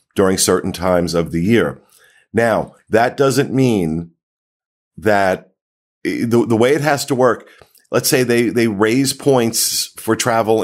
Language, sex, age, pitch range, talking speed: English, male, 50-69, 90-115 Hz, 145 wpm